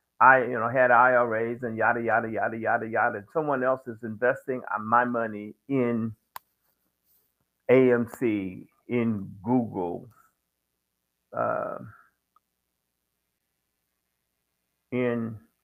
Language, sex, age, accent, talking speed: English, male, 50-69, American, 90 wpm